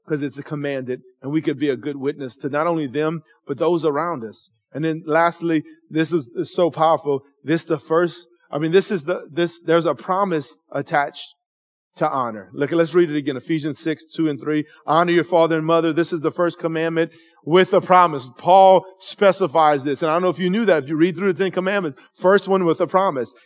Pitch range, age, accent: 150-190 Hz, 40-59, American